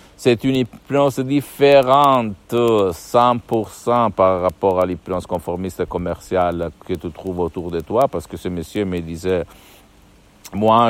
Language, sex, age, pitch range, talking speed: Italian, male, 60-79, 95-120 Hz, 130 wpm